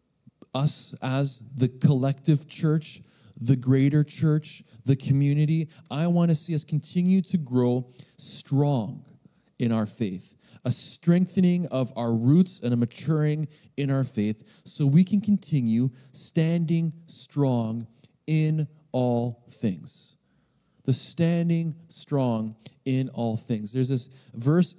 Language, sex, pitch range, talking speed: English, male, 125-155 Hz, 125 wpm